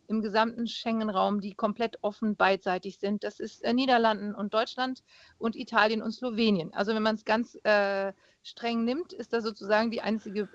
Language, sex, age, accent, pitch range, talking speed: German, female, 40-59, German, 205-245 Hz, 175 wpm